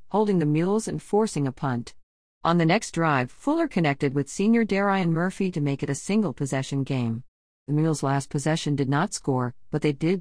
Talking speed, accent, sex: 195 wpm, American, female